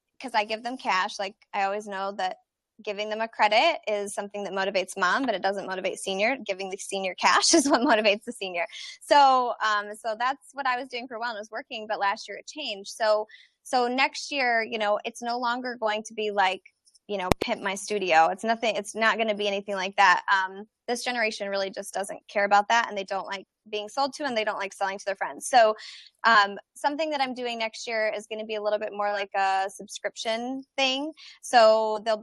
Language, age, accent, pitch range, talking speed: English, 20-39, American, 200-235 Hz, 235 wpm